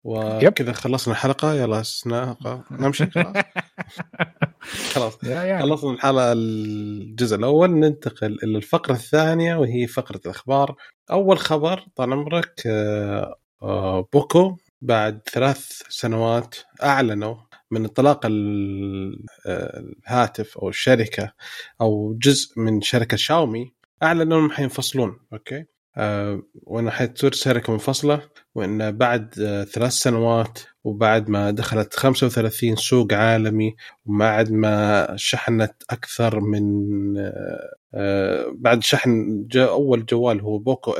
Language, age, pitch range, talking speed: Arabic, 30-49, 110-135 Hz, 95 wpm